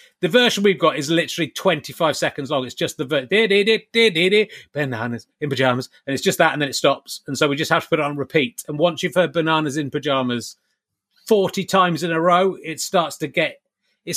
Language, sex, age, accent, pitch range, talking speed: English, male, 30-49, British, 145-185 Hz, 215 wpm